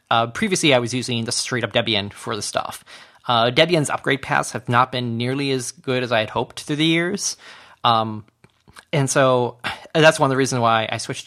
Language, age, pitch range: English, 20-39, 115-135 Hz